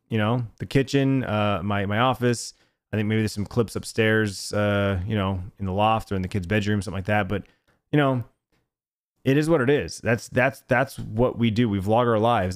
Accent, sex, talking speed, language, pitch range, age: American, male, 225 wpm, English, 105-130 Hz, 30-49